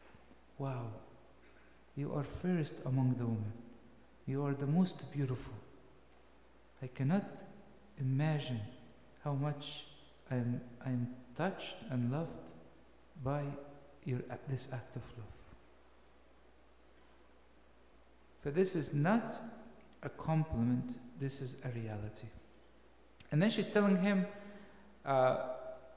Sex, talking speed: male, 100 wpm